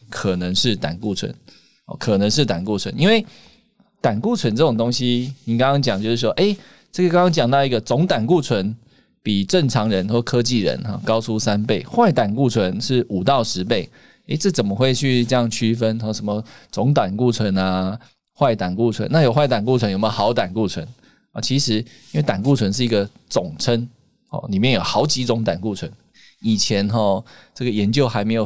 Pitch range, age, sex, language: 105-135 Hz, 20-39, male, Chinese